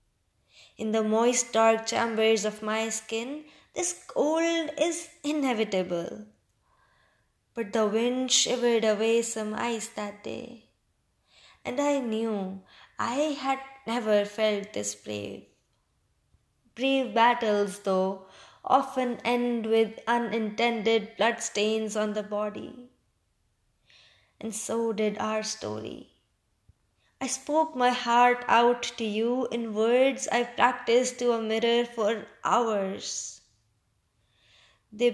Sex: female